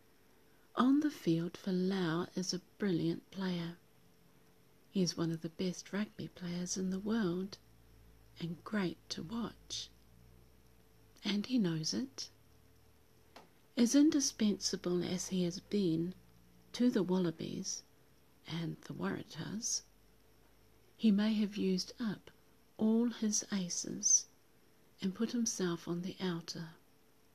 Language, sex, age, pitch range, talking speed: English, female, 50-69, 170-210 Hz, 115 wpm